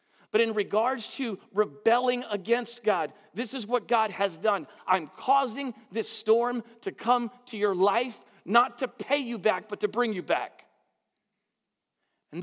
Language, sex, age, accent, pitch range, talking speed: English, male, 40-59, American, 150-225 Hz, 160 wpm